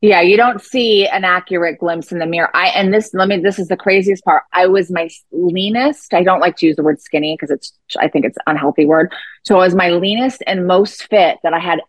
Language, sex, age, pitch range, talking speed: English, female, 30-49, 160-195 Hz, 255 wpm